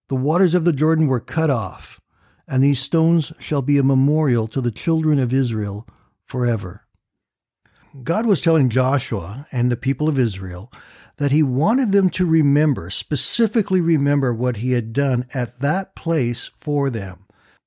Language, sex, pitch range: English, male, 115-145 Hz